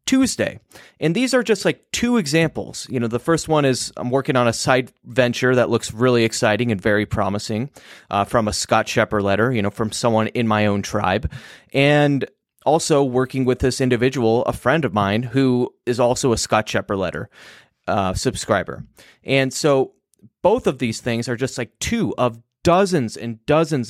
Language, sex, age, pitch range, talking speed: English, male, 30-49, 110-140 Hz, 185 wpm